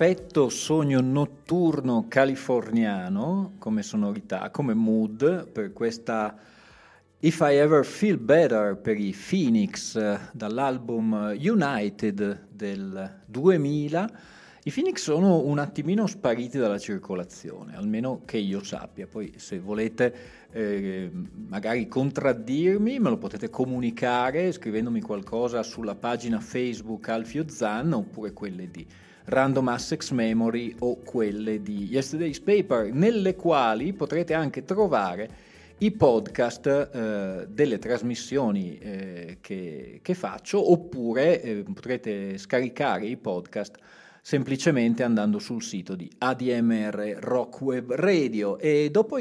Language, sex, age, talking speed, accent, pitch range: Italian, male, 40-59, 110 wpm, native, 110-180 Hz